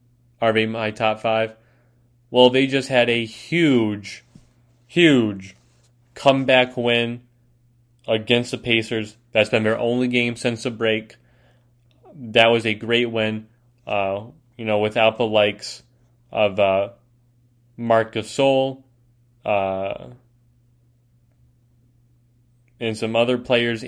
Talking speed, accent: 110 wpm, American